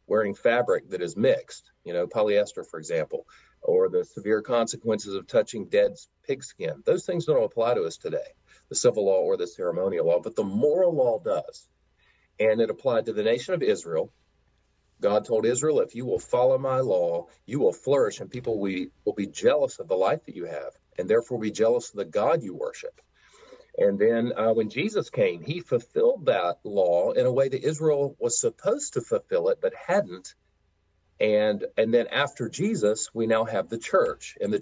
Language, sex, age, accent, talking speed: English, male, 40-59, American, 195 wpm